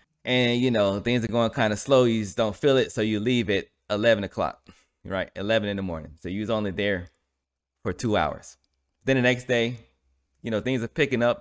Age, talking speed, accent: 20-39, 225 wpm, American